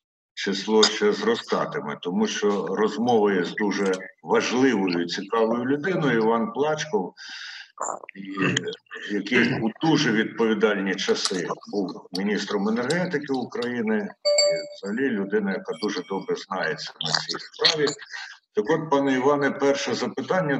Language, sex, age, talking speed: Ukrainian, male, 50-69, 115 wpm